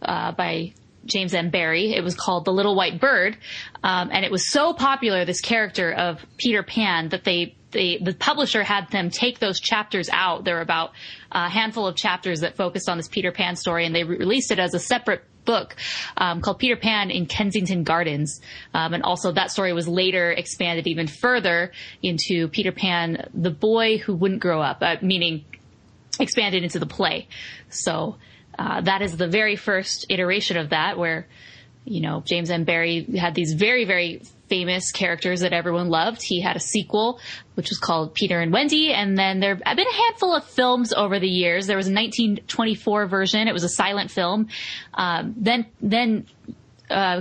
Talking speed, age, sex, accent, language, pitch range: 190 wpm, 20-39, female, American, English, 175-215 Hz